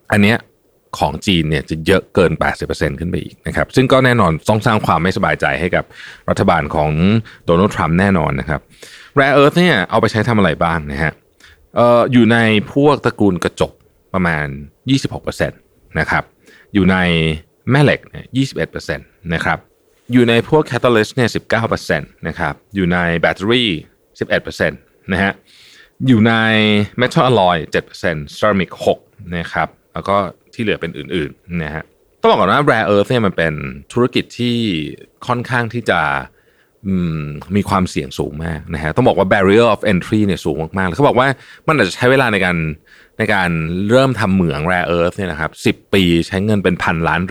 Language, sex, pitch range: Thai, male, 85-120 Hz